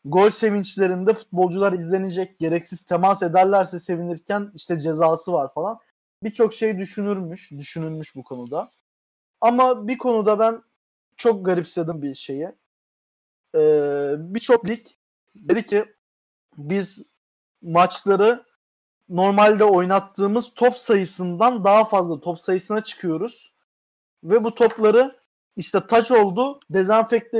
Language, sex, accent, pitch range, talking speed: Turkish, male, native, 165-220 Hz, 105 wpm